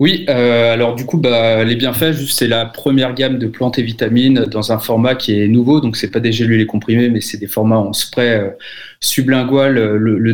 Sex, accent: male, French